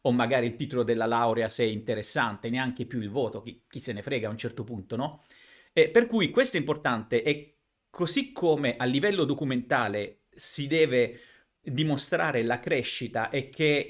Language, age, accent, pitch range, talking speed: Italian, 40-59, native, 120-155 Hz, 180 wpm